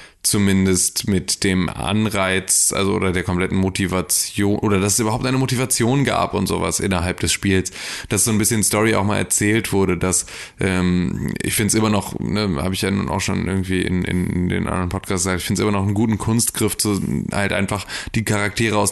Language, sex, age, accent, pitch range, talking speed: German, male, 20-39, German, 90-105 Hz, 210 wpm